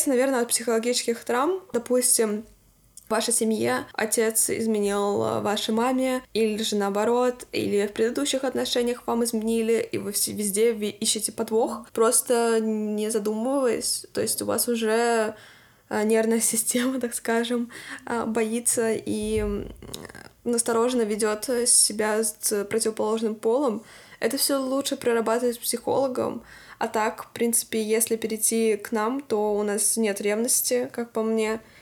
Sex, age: female, 10-29